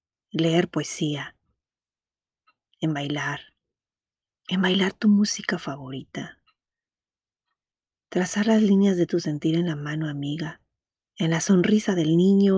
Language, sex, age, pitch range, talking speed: Spanish, female, 30-49, 160-220 Hz, 115 wpm